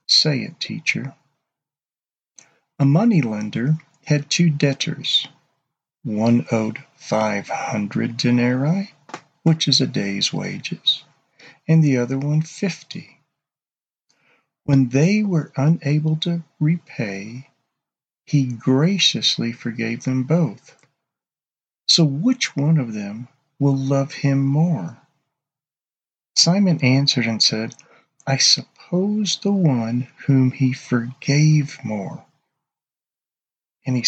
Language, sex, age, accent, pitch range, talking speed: English, male, 50-69, American, 125-160 Hz, 100 wpm